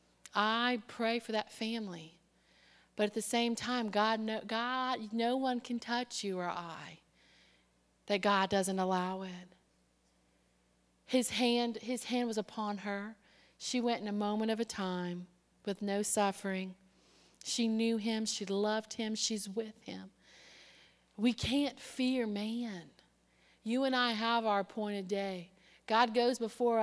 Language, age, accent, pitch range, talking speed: English, 40-59, American, 195-230 Hz, 145 wpm